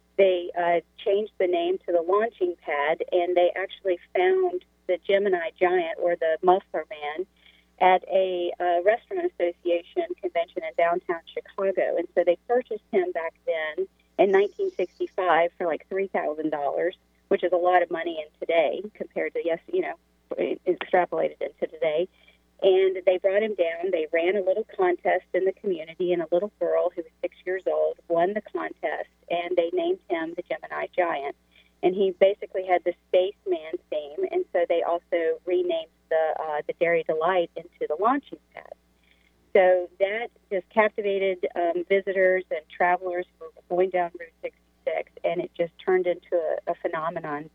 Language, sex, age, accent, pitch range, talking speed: English, female, 40-59, American, 175-255 Hz, 165 wpm